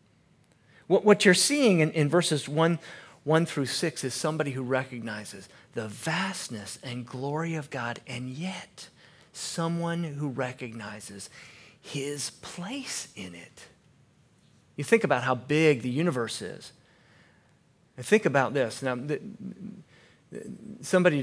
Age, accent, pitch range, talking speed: 40-59, American, 120-165 Hz, 120 wpm